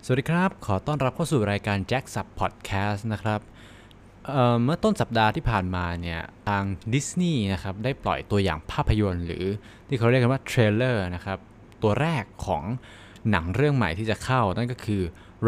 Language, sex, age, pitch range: Thai, male, 20-39, 95-115 Hz